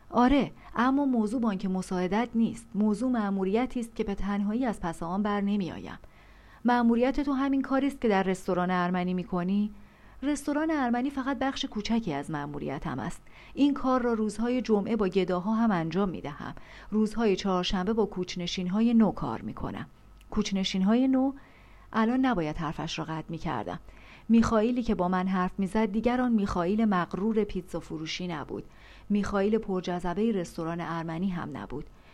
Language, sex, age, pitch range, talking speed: Persian, female, 40-59, 180-230 Hz, 155 wpm